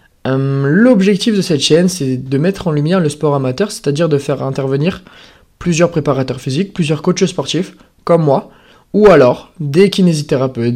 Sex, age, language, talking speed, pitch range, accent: male, 20-39, French, 165 wpm, 145-200 Hz, French